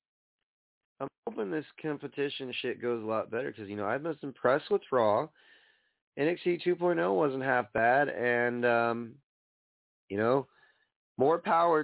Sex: male